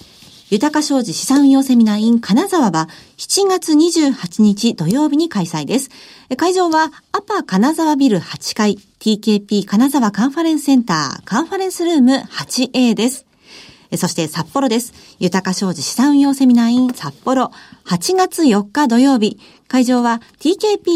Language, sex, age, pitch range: Japanese, female, 40-59, 190-280 Hz